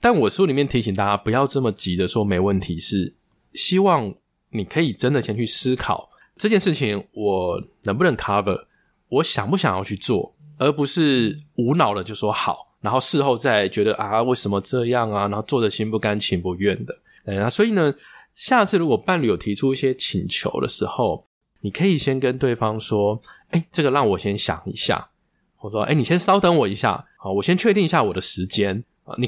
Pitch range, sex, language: 105-150 Hz, male, Chinese